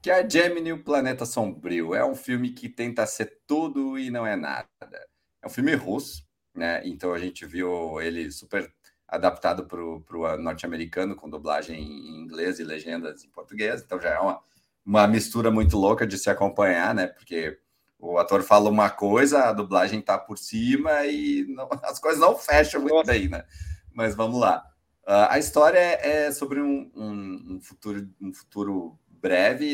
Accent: Brazilian